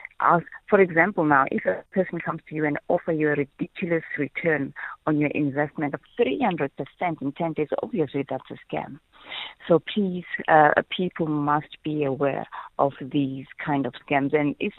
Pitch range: 145-170 Hz